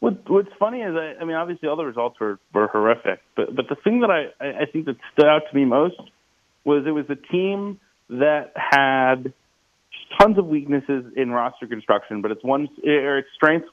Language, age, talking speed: English, 30-49, 200 wpm